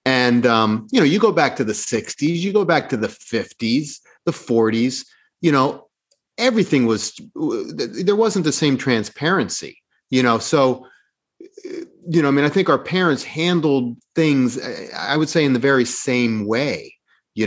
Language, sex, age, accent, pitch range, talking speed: English, male, 30-49, American, 115-150 Hz, 170 wpm